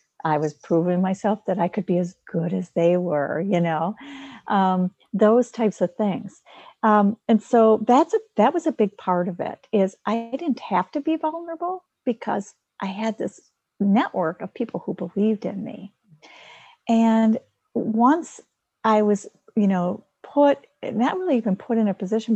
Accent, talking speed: American, 170 wpm